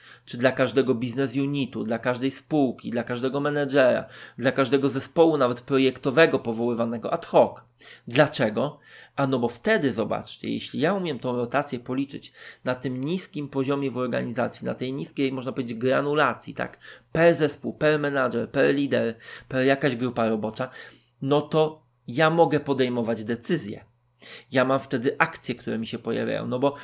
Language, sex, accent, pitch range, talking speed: Polish, male, native, 125-145 Hz, 155 wpm